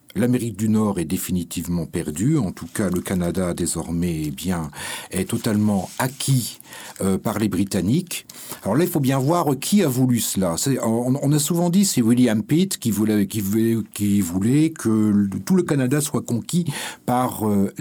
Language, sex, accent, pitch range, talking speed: French, male, French, 105-145 Hz, 185 wpm